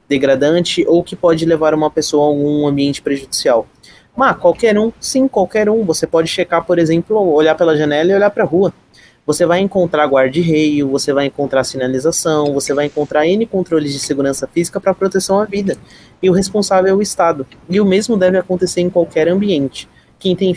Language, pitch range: Portuguese, 140-180 Hz